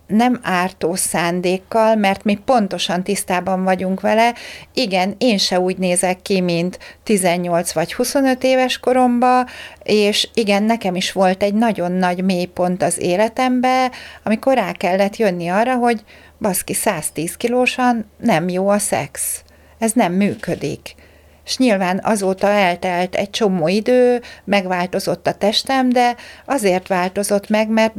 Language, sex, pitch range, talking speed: Hungarian, female, 180-235 Hz, 135 wpm